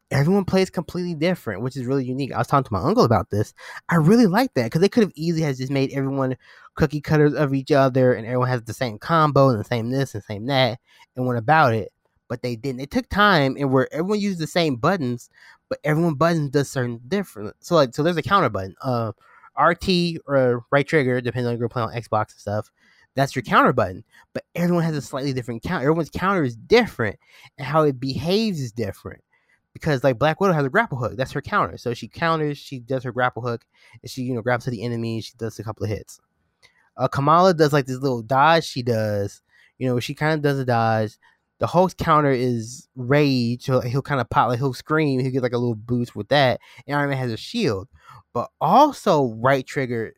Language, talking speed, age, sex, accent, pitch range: English, 235 wpm, 20-39, male, American, 125-160 Hz